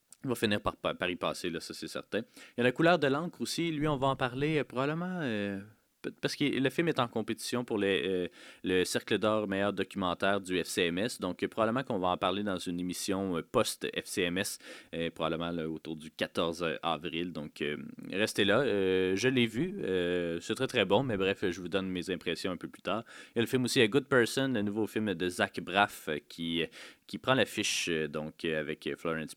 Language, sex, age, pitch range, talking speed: French, male, 30-49, 90-120 Hz, 220 wpm